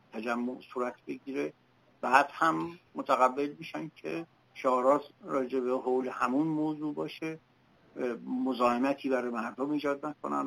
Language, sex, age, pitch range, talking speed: Persian, male, 60-79, 120-155 Hz, 115 wpm